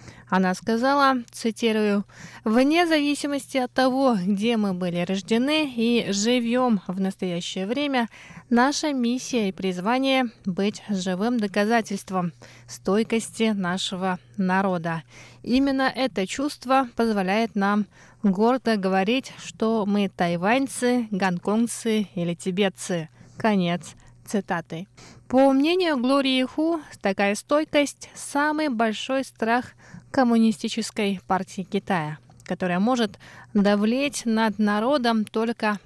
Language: Russian